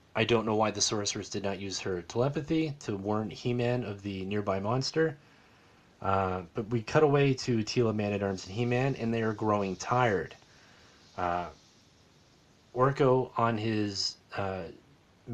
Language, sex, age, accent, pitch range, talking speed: English, male, 30-49, American, 100-125 Hz, 155 wpm